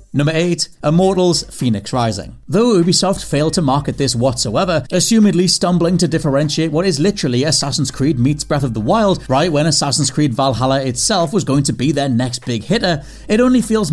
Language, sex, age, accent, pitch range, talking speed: English, male, 30-49, British, 140-195 Hz, 185 wpm